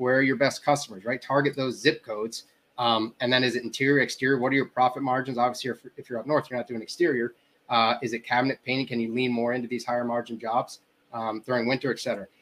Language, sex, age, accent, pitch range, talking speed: English, male, 30-49, American, 120-140 Hz, 240 wpm